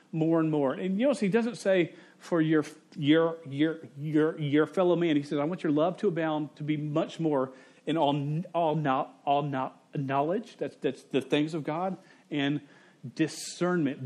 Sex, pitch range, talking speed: male, 140-175 Hz, 190 wpm